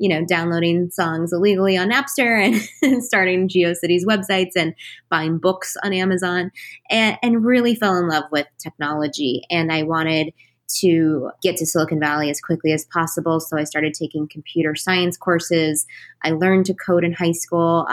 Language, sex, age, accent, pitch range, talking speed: English, female, 20-39, American, 165-205 Hz, 165 wpm